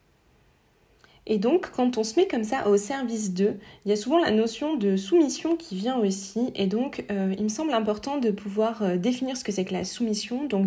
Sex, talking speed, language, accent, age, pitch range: female, 220 wpm, French, French, 20-39, 195-240 Hz